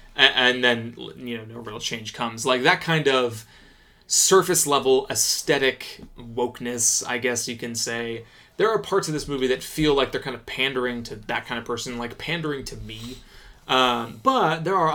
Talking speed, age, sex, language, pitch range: 190 wpm, 20-39, male, English, 120-145 Hz